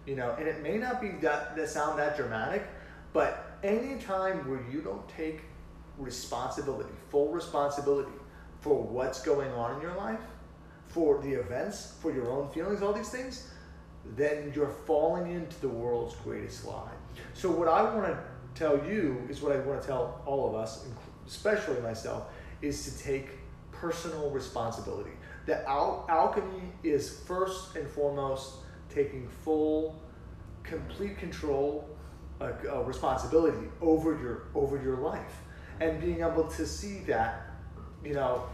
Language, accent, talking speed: English, American, 150 wpm